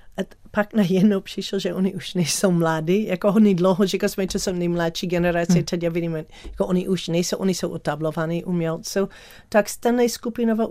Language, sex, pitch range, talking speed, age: Czech, female, 170-205 Hz, 185 wpm, 40-59